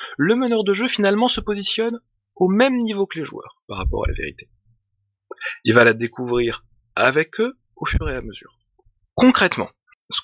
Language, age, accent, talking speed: French, 30-49, French, 180 wpm